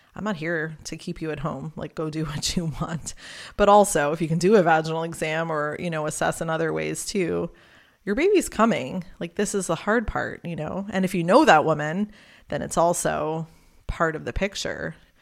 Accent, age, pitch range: American, 20-39, 155-190 Hz